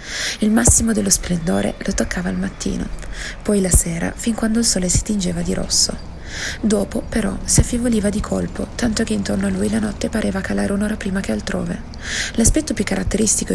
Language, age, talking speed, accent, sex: Italian, 30-49, 180 wpm, native, female